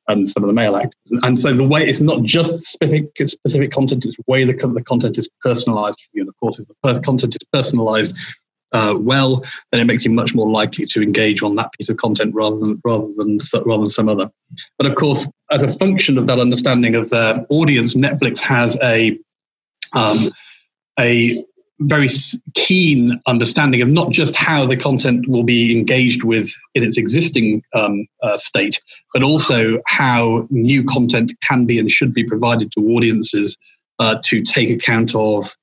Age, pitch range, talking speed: 40-59, 110-135 Hz, 190 wpm